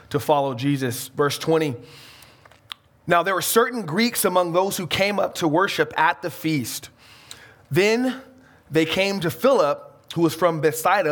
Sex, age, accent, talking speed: male, 20-39, American, 155 wpm